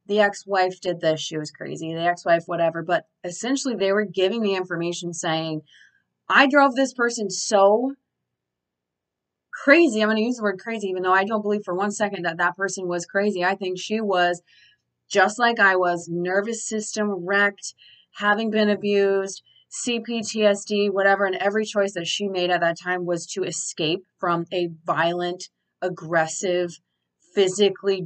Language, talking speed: English, 165 wpm